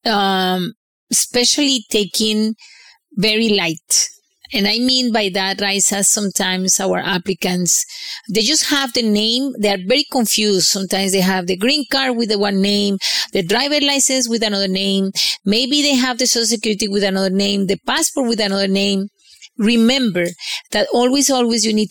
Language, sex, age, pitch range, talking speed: English, female, 30-49, 195-245 Hz, 165 wpm